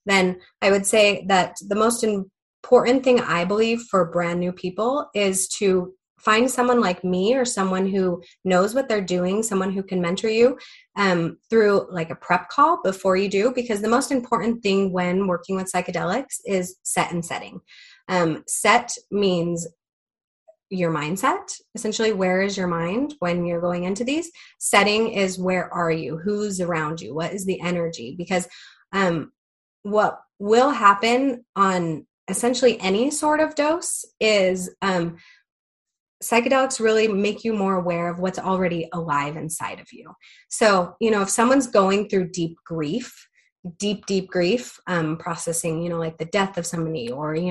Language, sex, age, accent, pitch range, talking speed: English, female, 20-39, American, 175-220 Hz, 165 wpm